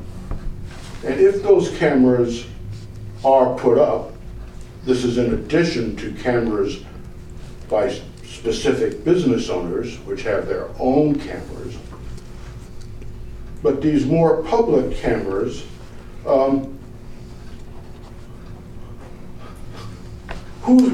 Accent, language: American, English